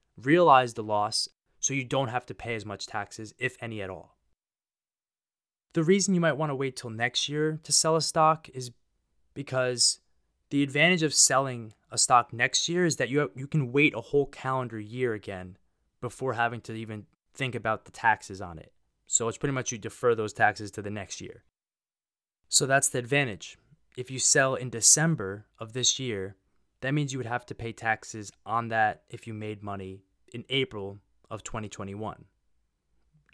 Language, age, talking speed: English, 20-39, 185 wpm